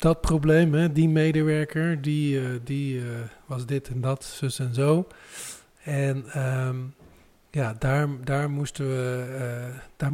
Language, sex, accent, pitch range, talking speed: Dutch, male, Dutch, 130-155 Hz, 150 wpm